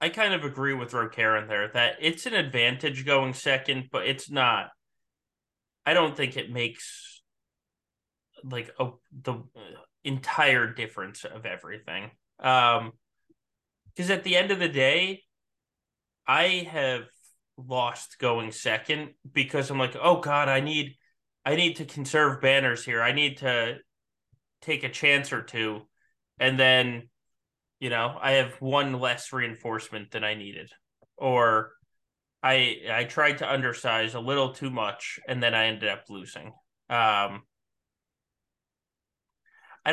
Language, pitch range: English, 115-140 Hz